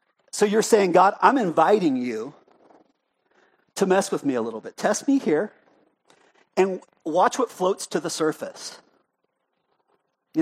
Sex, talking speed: male, 145 wpm